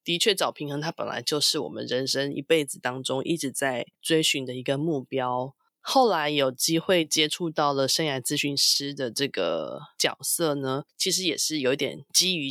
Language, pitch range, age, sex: Chinese, 140-175 Hz, 20-39, female